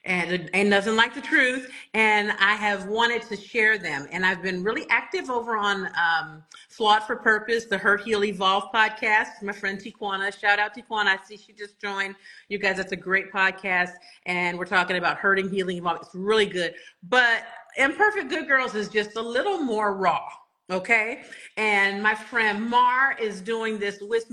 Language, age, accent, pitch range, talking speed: English, 40-59, American, 200-255 Hz, 185 wpm